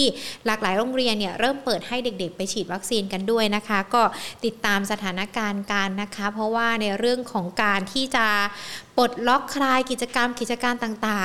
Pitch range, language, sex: 210-255 Hz, Thai, female